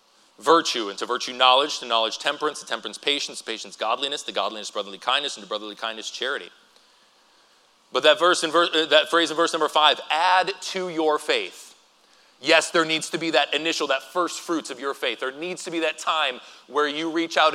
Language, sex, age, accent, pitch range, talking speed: English, male, 30-49, American, 140-175 Hz, 205 wpm